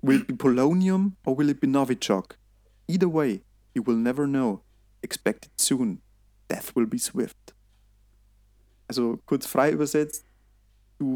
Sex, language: male, German